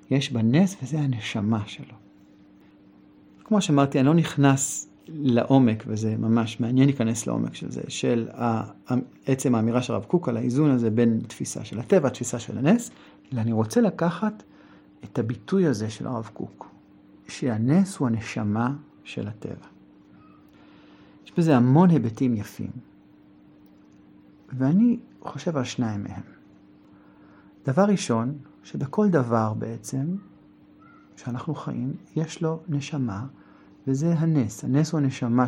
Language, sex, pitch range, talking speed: Hebrew, male, 110-145 Hz, 125 wpm